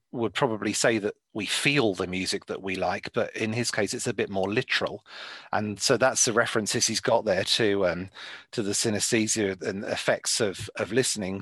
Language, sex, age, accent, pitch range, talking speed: English, male, 40-59, British, 110-150 Hz, 200 wpm